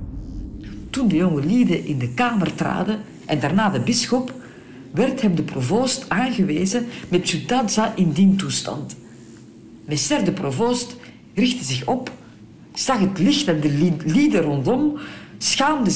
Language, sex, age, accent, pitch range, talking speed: French, female, 50-69, Dutch, 160-235 Hz, 140 wpm